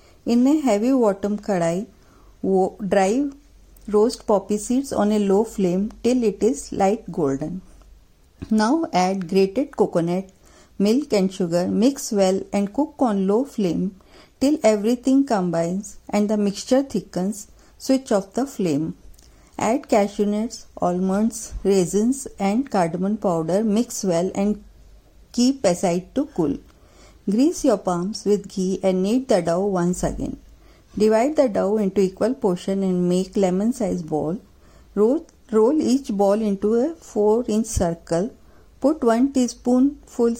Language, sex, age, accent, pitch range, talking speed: Hindi, female, 50-69, native, 190-235 Hz, 140 wpm